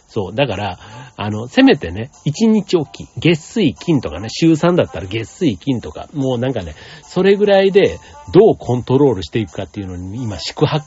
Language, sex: Japanese, male